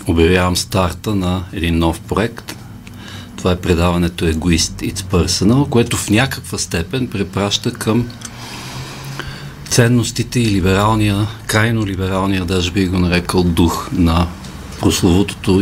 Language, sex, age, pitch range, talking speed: Bulgarian, male, 50-69, 85-105 Hz, 115 wpm